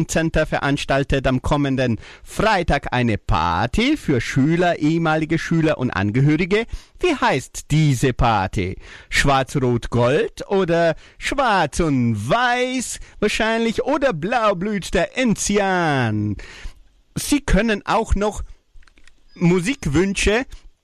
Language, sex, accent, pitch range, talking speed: German, male, German, 140-195 Hz, 90 wpm